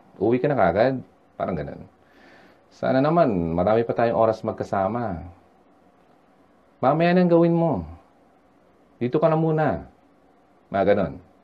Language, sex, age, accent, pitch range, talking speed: Filipino, male, 40-59, native, 95-135 Hz, 110 wpm